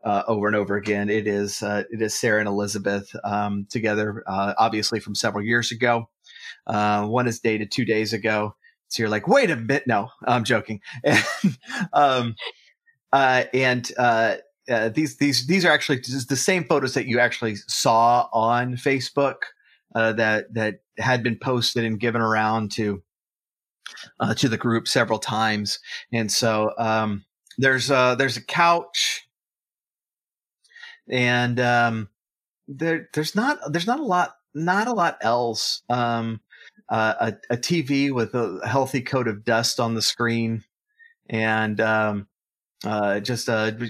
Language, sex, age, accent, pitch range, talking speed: English, male, 30-49, American, 110-130 Hz, 155 wpm